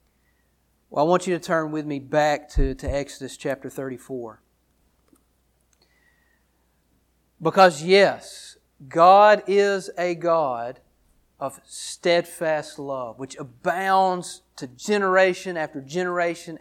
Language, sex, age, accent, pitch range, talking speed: English, male, 40-59, American, 130-175 Hz, 105 wpm